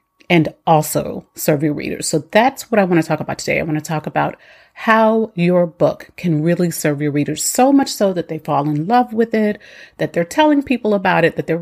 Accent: American